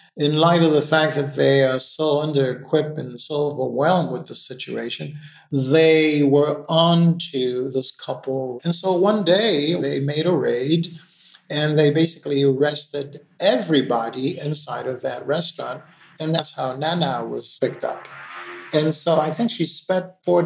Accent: American